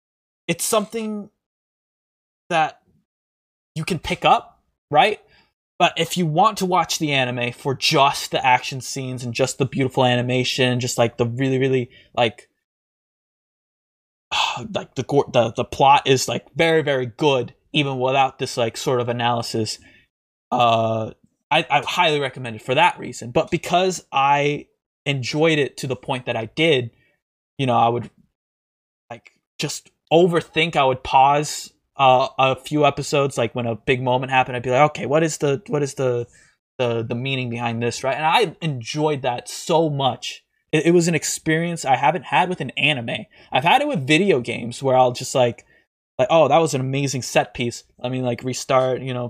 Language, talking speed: English, 180 wpm